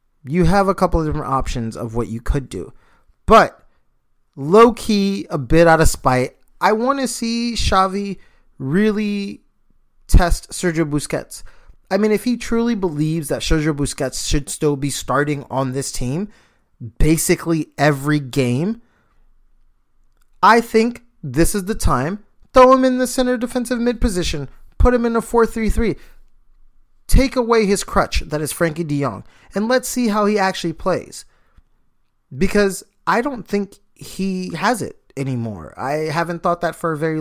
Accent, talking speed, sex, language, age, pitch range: American, 155 wpm, male, English, 30-49, 135-200 Hz